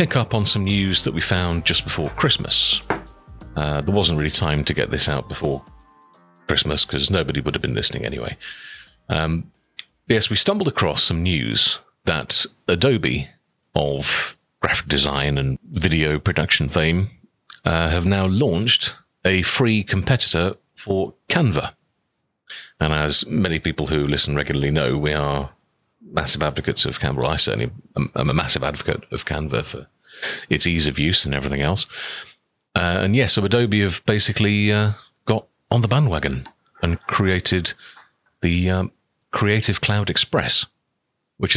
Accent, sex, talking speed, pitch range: British, male, 150 wpm, 80-105 Hz